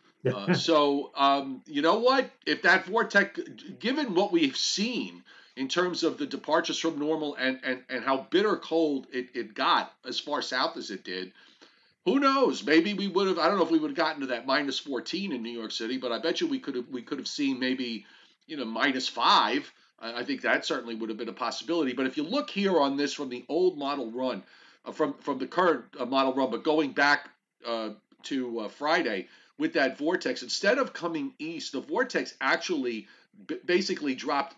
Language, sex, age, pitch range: English, male, 40-59, 125-180 Hz